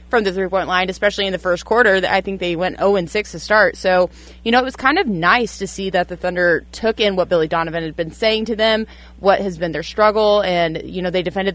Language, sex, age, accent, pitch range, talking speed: English, female, 20-39, American, 170-205 Hz, 255 wpm